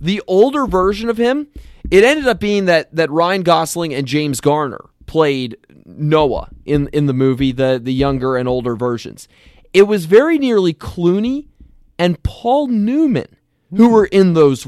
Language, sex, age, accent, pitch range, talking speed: English, male, 30-49, American, 155-230 Hz, 165 wpm